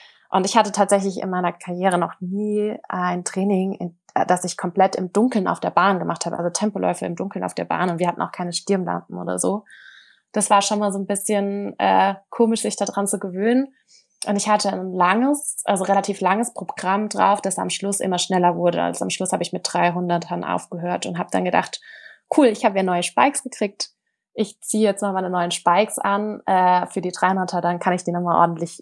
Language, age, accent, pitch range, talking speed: German, 20-39, German, 180-210 Hz, 210 wpm